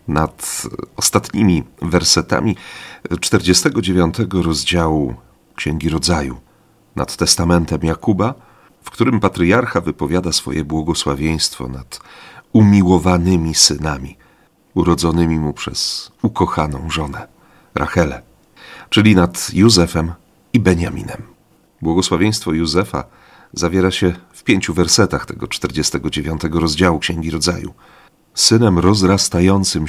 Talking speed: 90 wpm